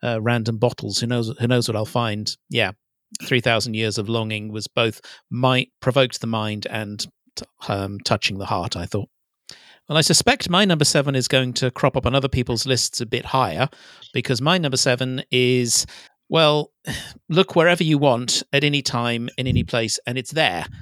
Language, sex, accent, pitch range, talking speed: English, male, British, 115-140 Hz, 195 wpm